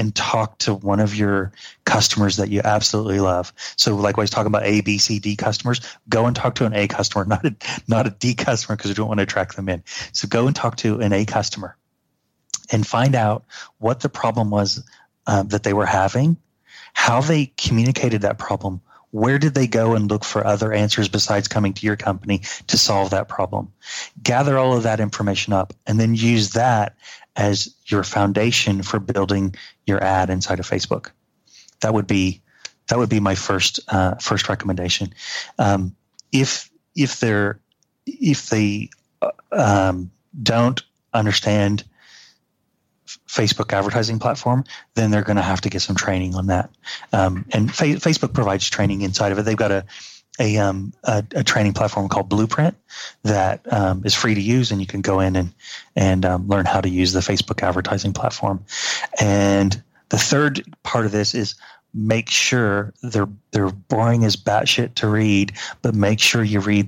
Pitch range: 100-115 Hz